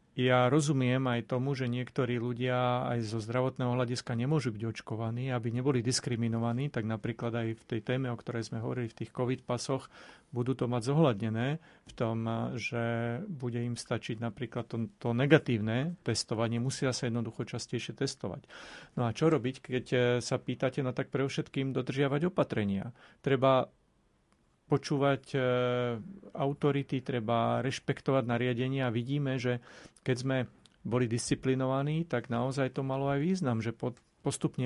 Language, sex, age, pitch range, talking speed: Slovak, male, 40-59, 120-135 Hz, 145 wpm